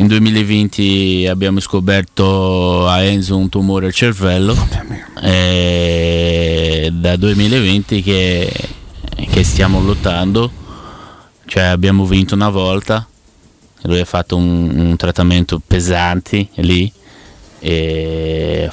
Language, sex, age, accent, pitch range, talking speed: Italian, male, 20-39, native, 90-105 Hz, 105 wpm